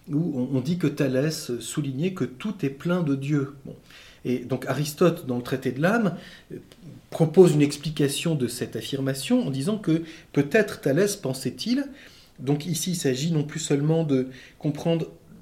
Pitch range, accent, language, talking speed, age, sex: 130-180 Hz, French, French, 160 wpm, 30-49, male